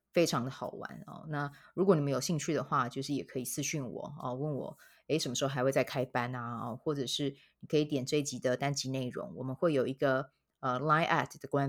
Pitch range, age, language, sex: 135-165 Hz, 20-39, Chinese, female